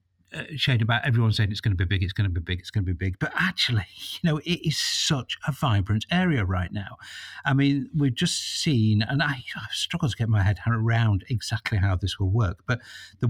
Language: English